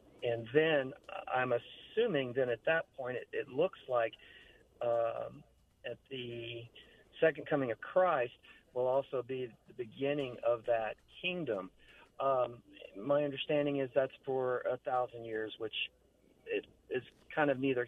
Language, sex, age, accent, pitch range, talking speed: English, male, 40-59, American, 120-150 Hz, 140 wpm